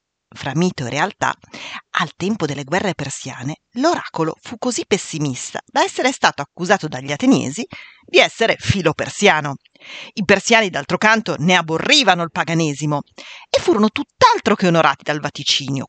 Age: 40-59